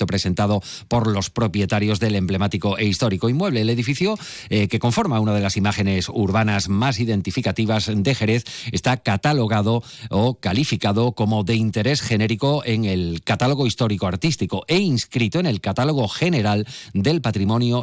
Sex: male